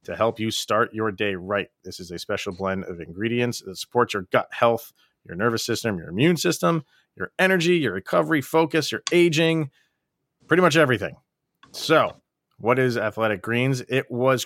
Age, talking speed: 30-49, 175 wpm